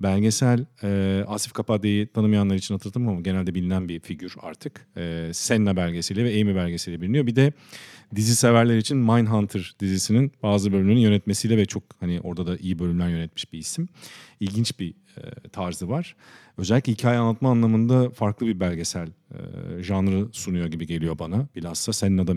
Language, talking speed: Turkish, 155 wpm